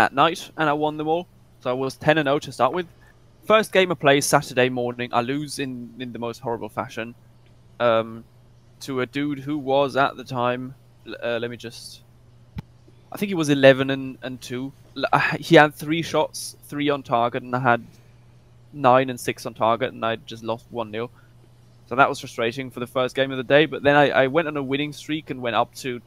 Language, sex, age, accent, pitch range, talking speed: English, male, 20-39, British, 120-145 Hz, 215 wpm